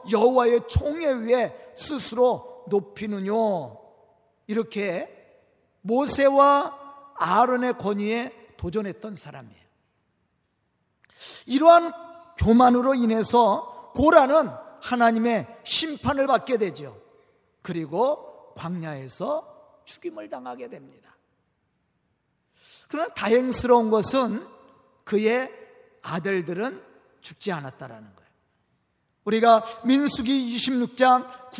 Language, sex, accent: Korean, male, native